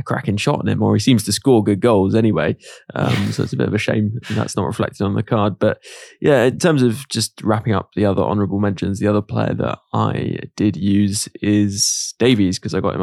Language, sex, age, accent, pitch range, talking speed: English, male, 20-39, British, 100-115 Hz, 235 wpm